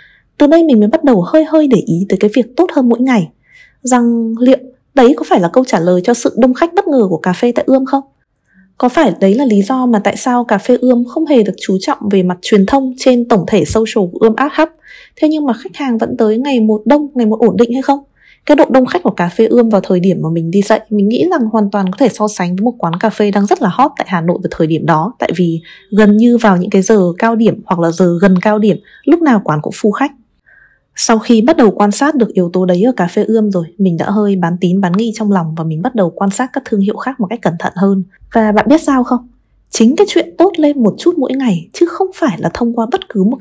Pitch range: 195-255 Hz